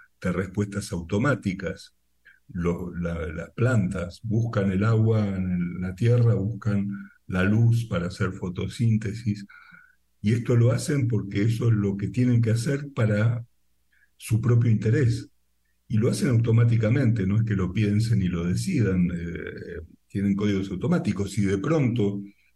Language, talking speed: Spanish, 140 wpm